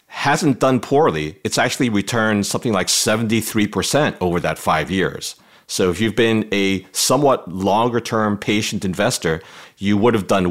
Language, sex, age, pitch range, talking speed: English, male, 40-59, 90-115 Hz, 150 wpm